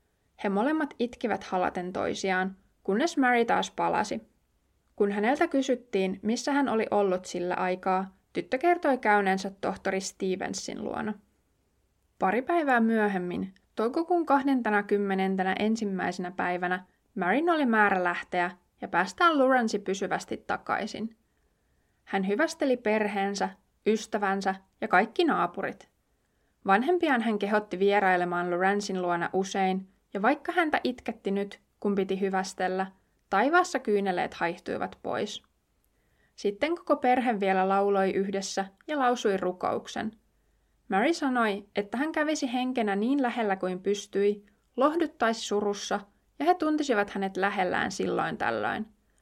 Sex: female